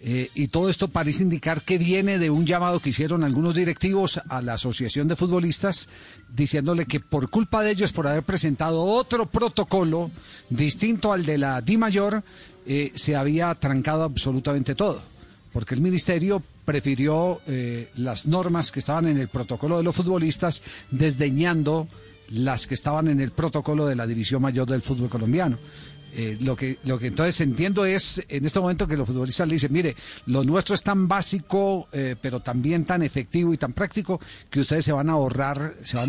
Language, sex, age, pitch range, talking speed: Spanish, male, 50-69, 130-170 Hz, 185 wpm